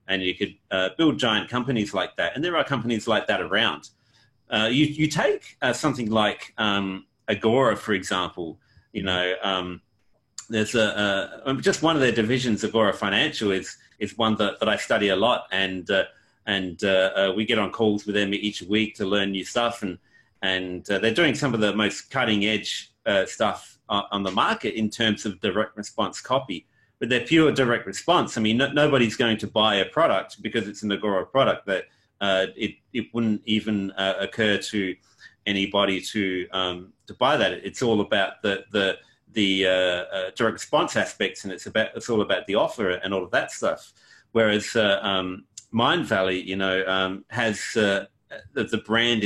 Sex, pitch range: male, 95-115 Hz